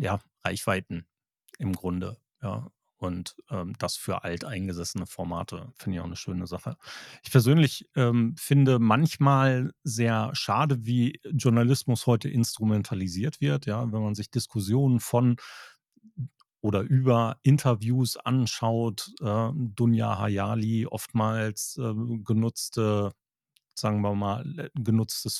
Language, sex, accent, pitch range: German, male, German, 105-130 Hz